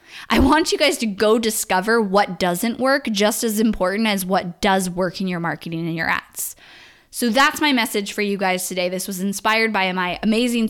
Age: 10-29